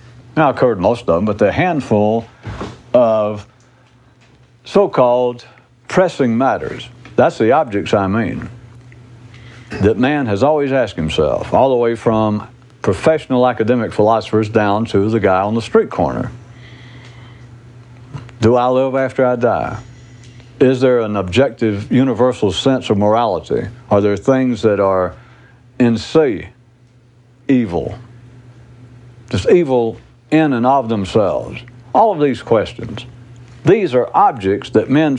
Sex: male